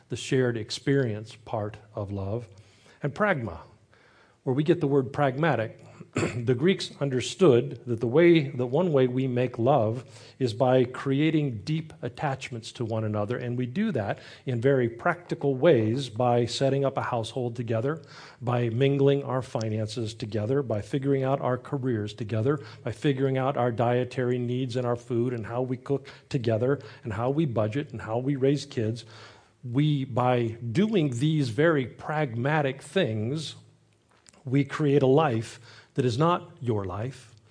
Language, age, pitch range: English, 40-59, 115-145 Hz